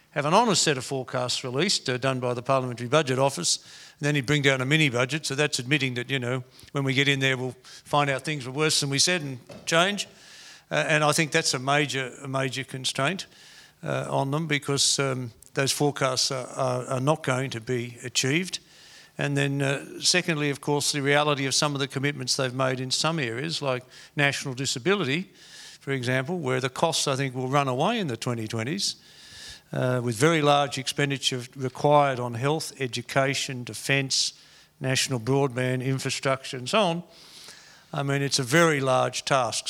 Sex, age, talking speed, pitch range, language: male, 50-69, 185 wpm, 130-150 Hz, English